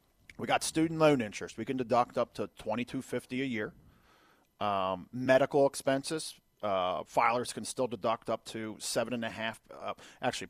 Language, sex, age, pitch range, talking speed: English, male, 40-59, 100-125 Hz, 165 wpm